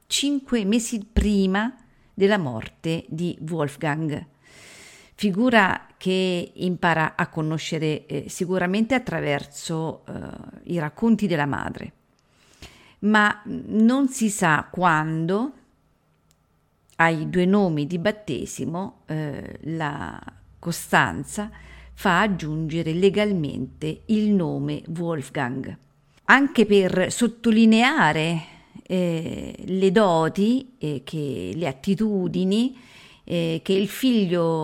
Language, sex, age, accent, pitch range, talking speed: Italian, female, 50-69, native, 155-210 Hz, 90 wpm